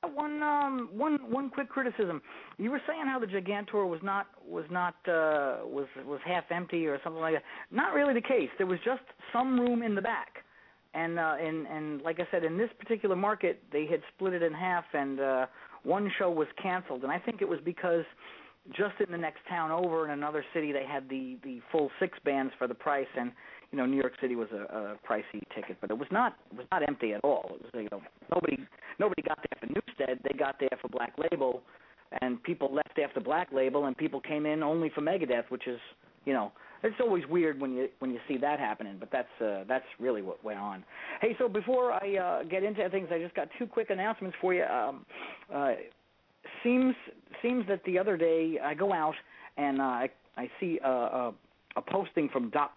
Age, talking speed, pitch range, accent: 40-59, 220 wpm, 135-200 Hz, American